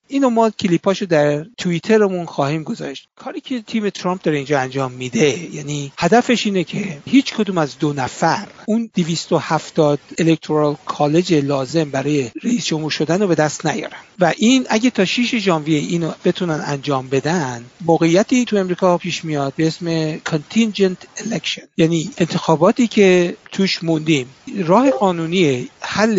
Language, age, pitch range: Persian, 60-79, 150-195 Hz